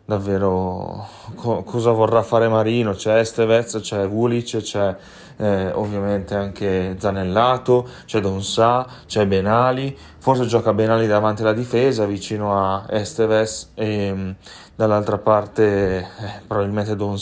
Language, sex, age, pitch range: Italian, male, 30-49, 100-120 Hz